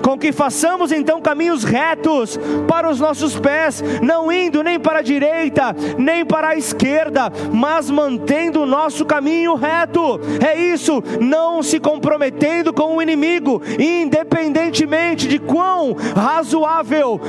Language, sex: Portuguese, male